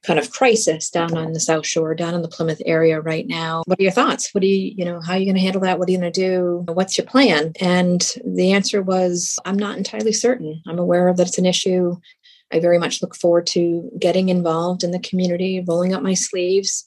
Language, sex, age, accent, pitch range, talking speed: English, female, 30-49, American, 165-195 Hz, 250 wpm